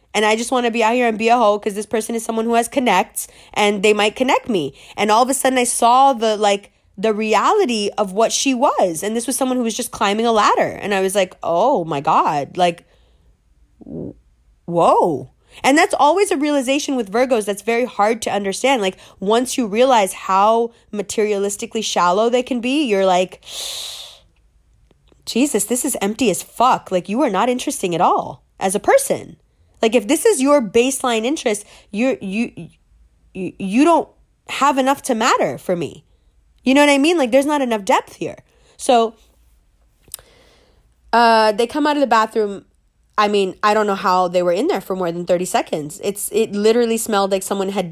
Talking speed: 200 wpm